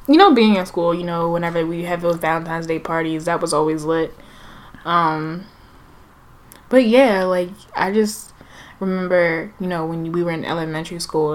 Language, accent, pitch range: English, American, 160-185 Hz